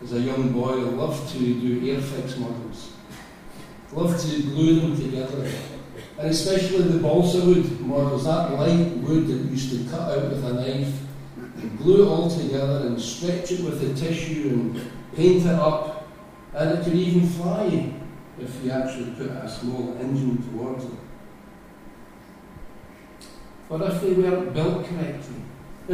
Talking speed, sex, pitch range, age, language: 155 wpm, male, 130-170 Hz, 60-79, English